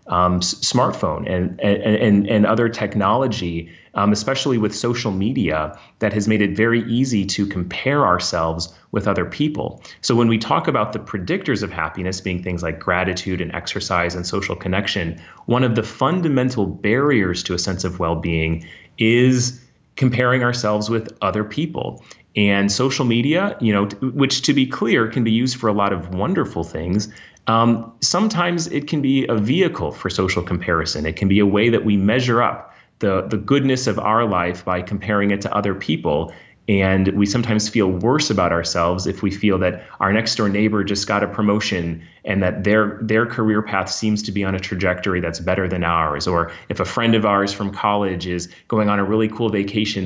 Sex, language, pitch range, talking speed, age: male, English, 90-115 Hz, 190 wpm, 30-49